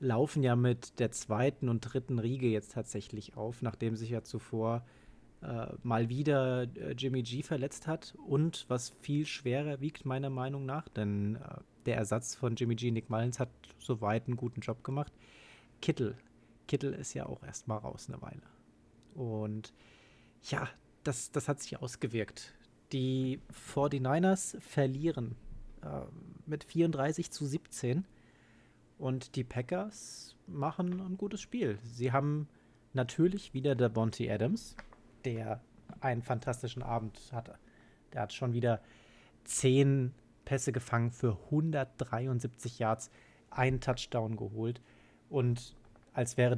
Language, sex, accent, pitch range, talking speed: German, male, German, 115-140 Hz, 135 wpm